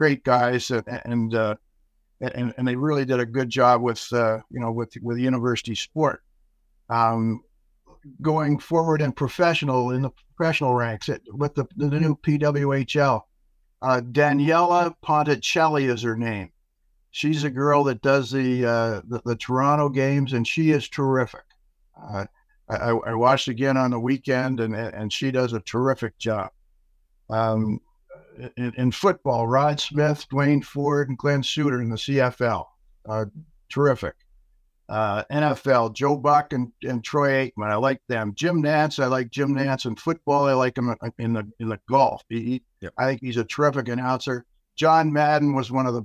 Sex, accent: male, American